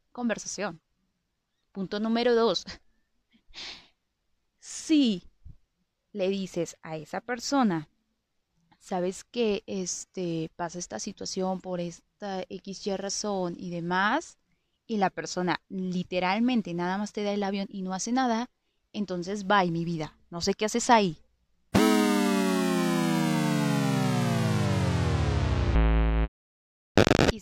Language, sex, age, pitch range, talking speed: Spanish, female, 20-39, 170-210 Hz, 100 wpm